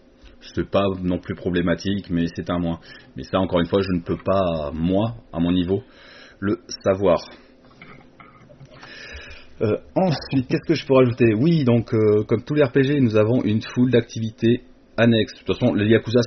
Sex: male